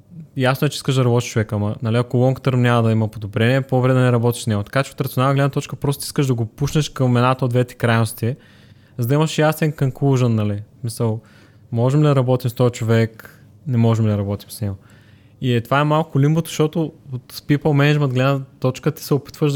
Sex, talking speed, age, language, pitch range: male, 225 wpm, 20-39, Bulgarian, 115-140 Hz